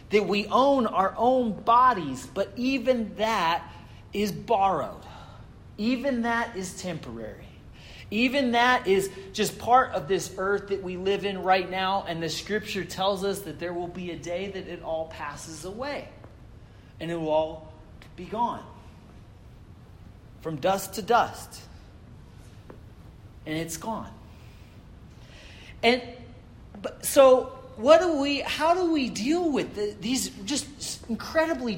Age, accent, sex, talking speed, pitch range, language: 30-49, American, male, 135 wpm, 160-240 Hz, English